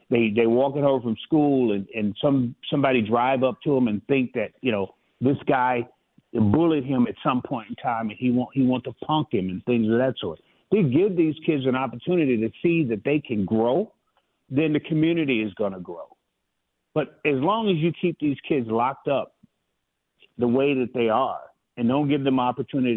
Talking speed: 215 wpm